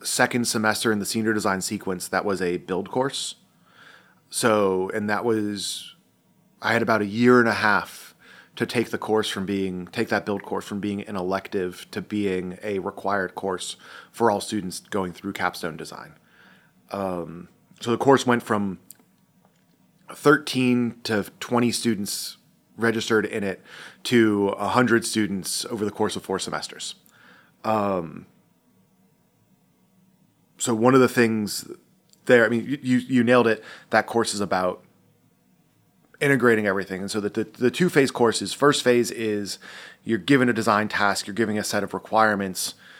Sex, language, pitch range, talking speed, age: male, English, 100-115 Hz, 155 wpm, 30-49